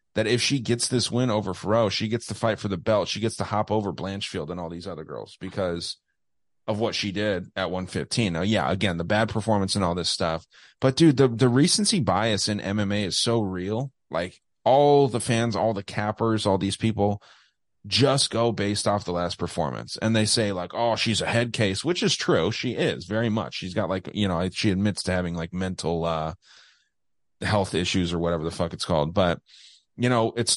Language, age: English, 30-49